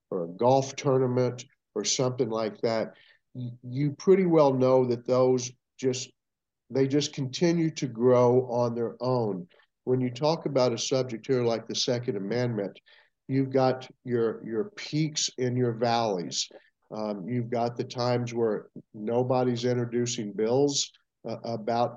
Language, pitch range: English, 115-135 Hz